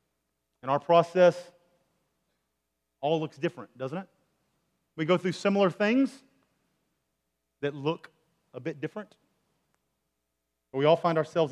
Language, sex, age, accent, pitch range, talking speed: English, male, 30-49, American, 135-170 Hz, 120 wpm